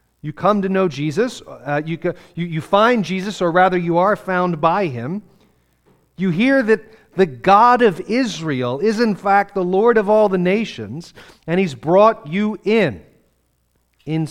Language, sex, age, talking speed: English, male, 40-59, 170 wpm